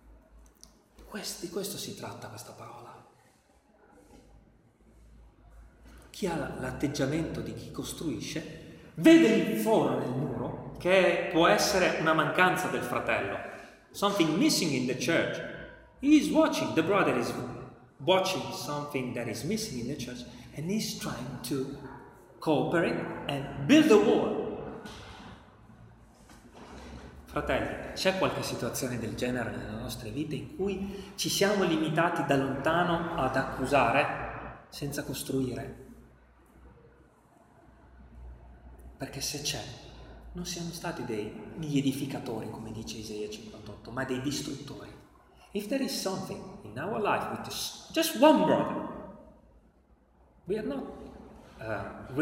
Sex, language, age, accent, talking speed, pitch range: male, Italian, 30-49, native, 115 wpm, 115-180 Hz